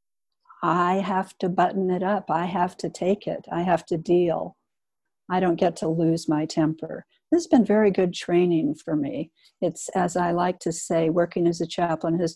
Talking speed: 200 wpm